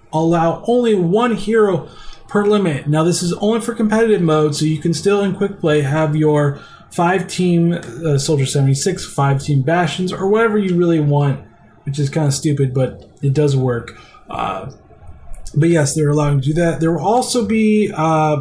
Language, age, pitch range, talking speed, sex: English, 20-39, 145-180 Hz, 190 wpm, male